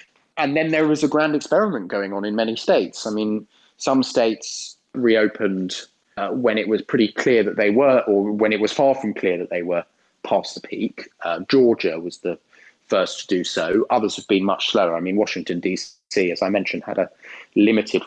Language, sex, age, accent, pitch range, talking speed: English, male, 30-49, British, 100-135 Hz, 205 wpm